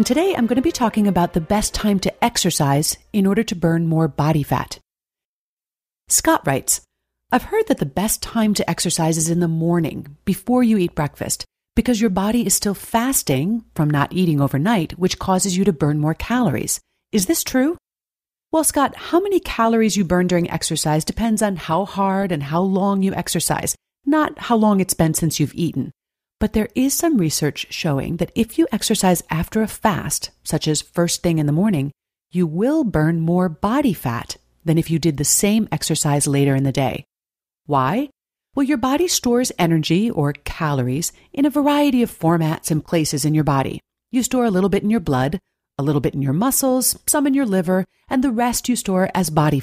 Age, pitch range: 40-59, 155-230 Hz